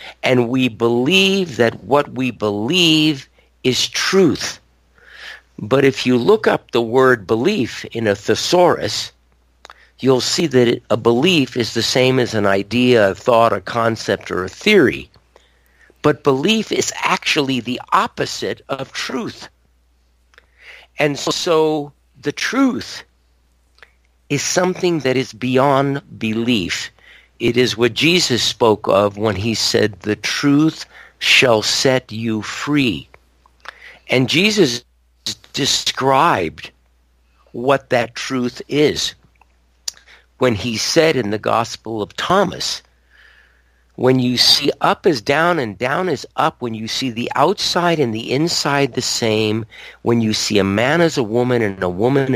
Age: 50-69